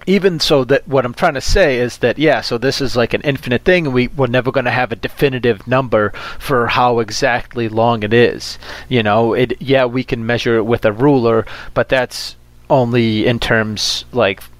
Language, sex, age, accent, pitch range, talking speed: English, male, 30-49, American, 110-130 Hz, 205 wpm